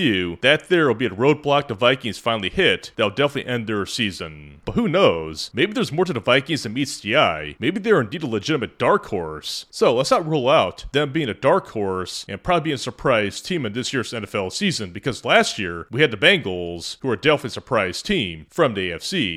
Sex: male